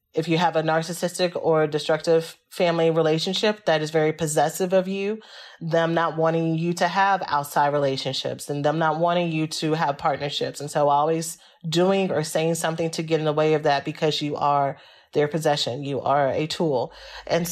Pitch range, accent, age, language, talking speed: 155-195 Hz, American, 30-49, English, 190 wpm